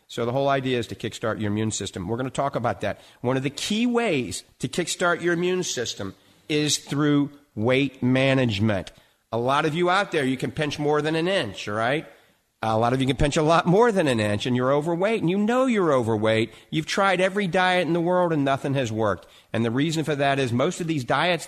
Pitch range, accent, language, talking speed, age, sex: 115-150 Hz, American, English, 235 wpm, 50-69, male